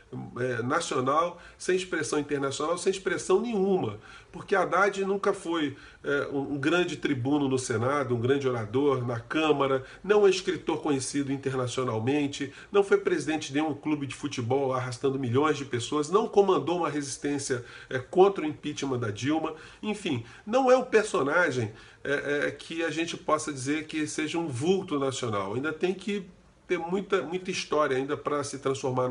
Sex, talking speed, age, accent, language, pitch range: male, 165 wpm, 40-59, Brazilian, Portuguese, 130-180 Hz